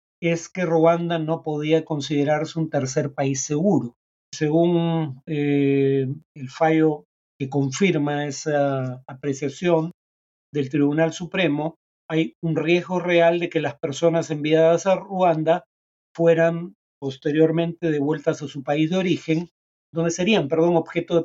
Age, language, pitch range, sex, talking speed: 40-59, Spanish, 145-165 Hz, male, 125 wpm